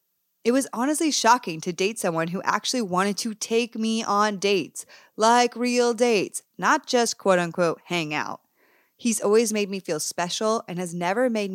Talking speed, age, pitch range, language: 175 wpm, 20-39, 175-230 Hz, English